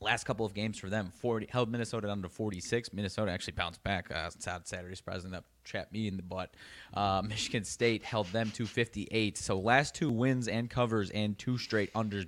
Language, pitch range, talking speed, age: English, 95-110 Hz, 205 wpm, 20-39